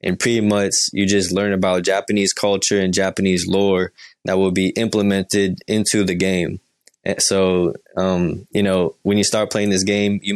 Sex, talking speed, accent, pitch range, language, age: male, 175 wpm, American, 90-100 Hz, English, 20-39